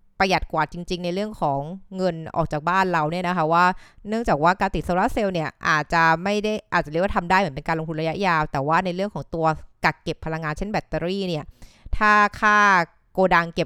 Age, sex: 20-39, female